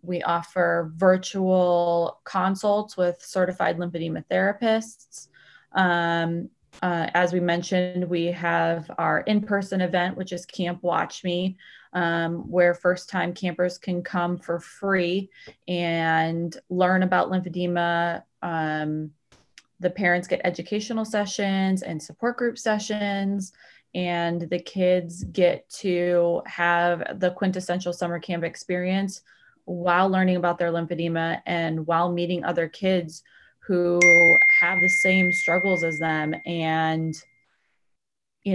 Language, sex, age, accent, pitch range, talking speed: English, female, 20-39, American, 170-185 Hz, 120 wpm